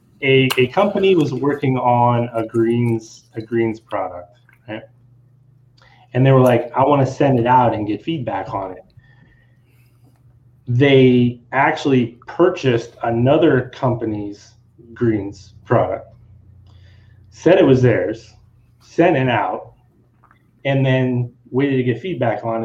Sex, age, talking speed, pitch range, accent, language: male, 30-49, 125 wpm, 115-130 Hz, American, English